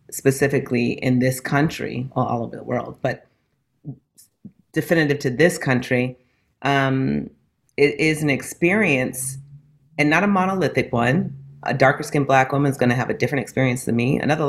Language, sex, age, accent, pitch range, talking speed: English, female, 40-59, American, 120-145 Hz, 165 wpm